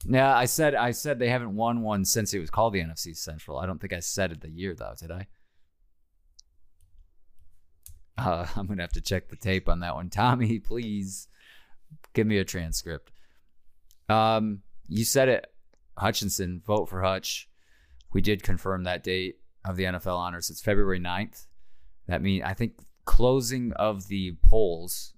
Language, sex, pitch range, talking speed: English, male, 85-100 Hz, 175 wpm